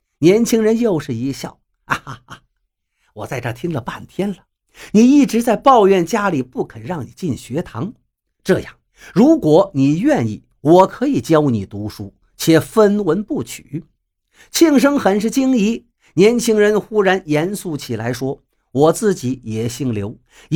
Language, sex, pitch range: Chinese, male, 155-230 Hz